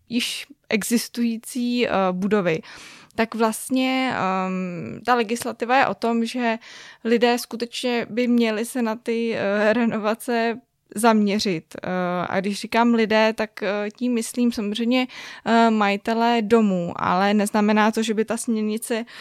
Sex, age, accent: female, 20-39, native